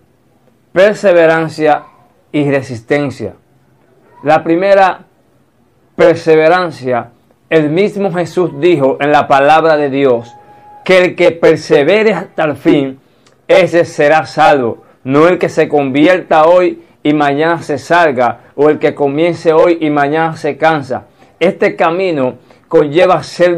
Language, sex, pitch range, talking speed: Spanish, male, 145-180 Hz, 120 wpm